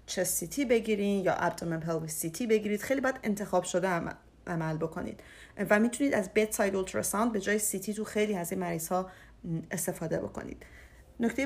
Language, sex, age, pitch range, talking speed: Persian, female, 40-59, 175-220 Hz, 180 wpm